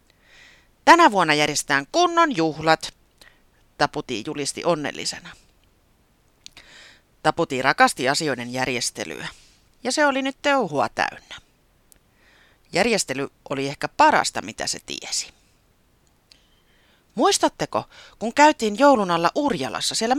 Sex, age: female, 30-49